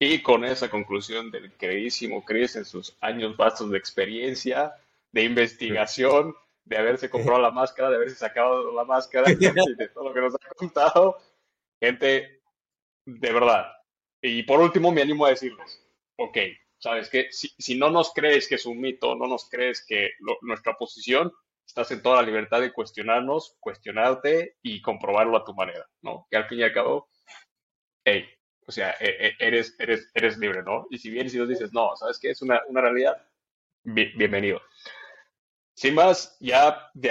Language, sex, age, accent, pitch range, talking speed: Spanish, male, 30-49, Mexican, 115-160 Hz, 175 wpm